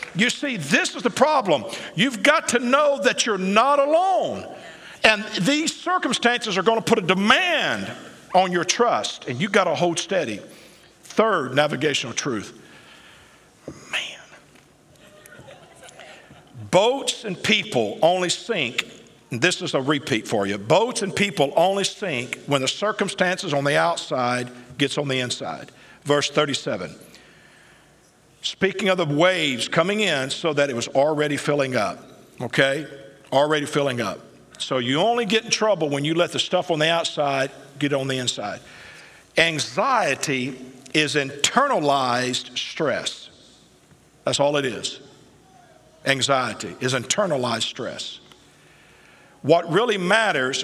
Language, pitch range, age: English, 135-210 Hz, 50-69